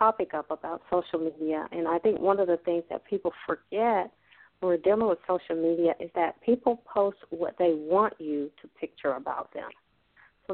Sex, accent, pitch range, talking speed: female, American, 160-200 Hz, 195 wpm